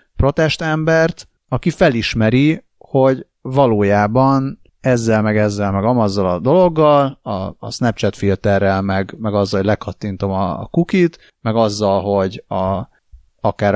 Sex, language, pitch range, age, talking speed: male, Hungarian, 100-140 Hz, 30-49, 125 wpm